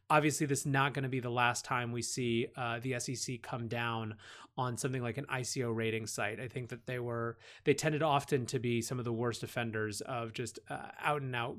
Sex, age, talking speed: male, 30-49, 235 wpm